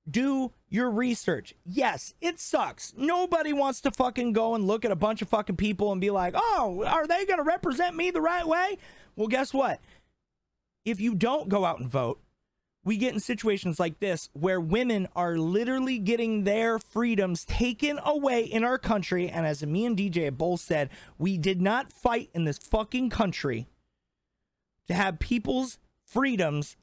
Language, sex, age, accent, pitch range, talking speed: English, male, 30-49, American, 190-270 Hz, 175 wpm